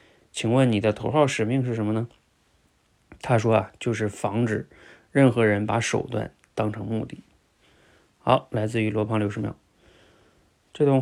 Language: Chinese